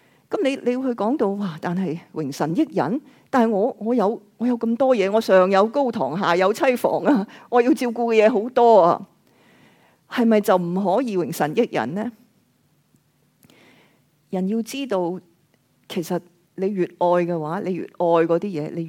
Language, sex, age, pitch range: Chinese, female, 40-59, 160-215 Hz